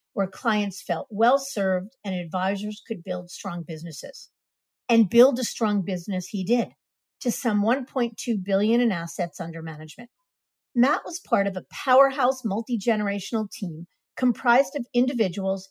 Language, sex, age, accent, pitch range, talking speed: English, female, 50-69, American, 185-245 Hz, 140 wpm